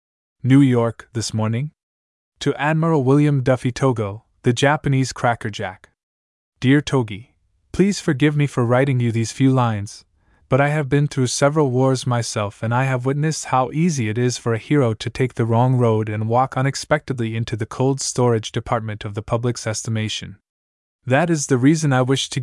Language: English